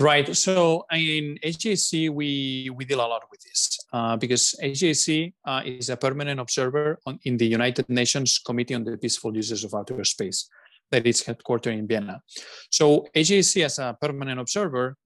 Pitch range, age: 125-160 Hz, 30-49